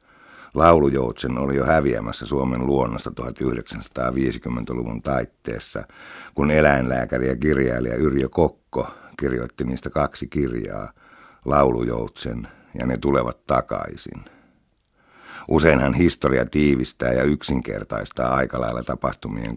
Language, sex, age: Finnish, male, 60-79